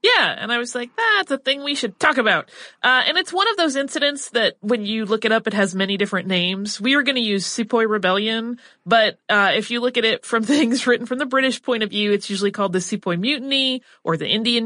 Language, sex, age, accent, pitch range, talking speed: English, female, 30-49, American, 175-245 Hz, 255 wpm